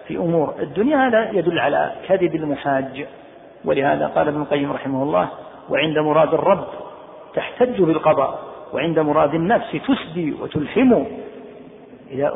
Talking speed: 120 wpm